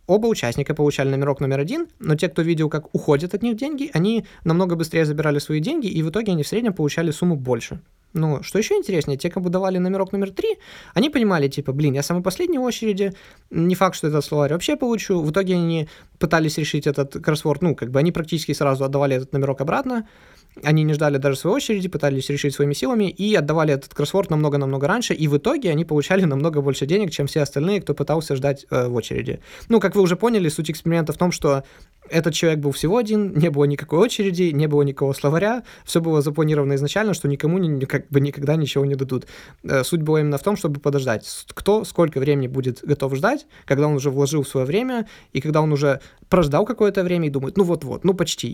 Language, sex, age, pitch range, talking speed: Russian, male, 20-39, 140-190 Hz, 210 wpm